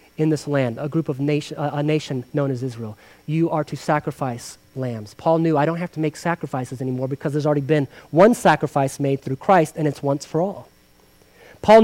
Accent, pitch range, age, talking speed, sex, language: American, 135-220 Hz, 30-49, 210 wpm, male, English